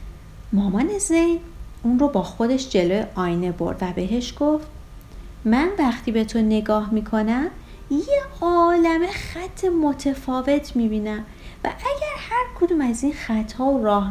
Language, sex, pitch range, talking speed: Persian, female, 190-280 Hz, 140 wpm